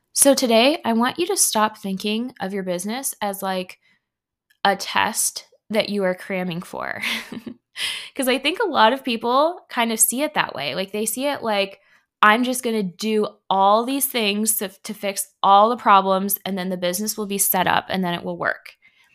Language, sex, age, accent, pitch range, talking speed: English, female, 20-39, American, 190-235 Hz, 205 wpm